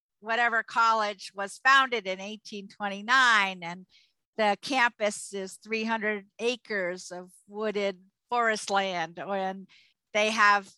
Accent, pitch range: American, 190-230 Hz